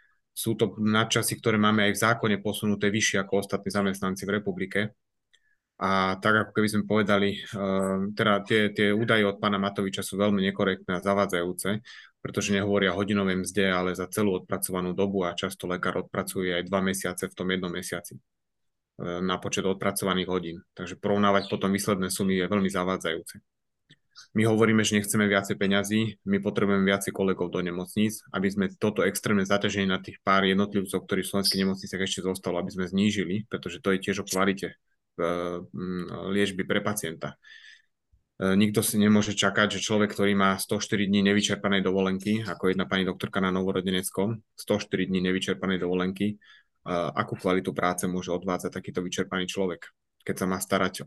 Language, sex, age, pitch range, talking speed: Slovak, male, 20-39, 95-105 Hz, 160 wpm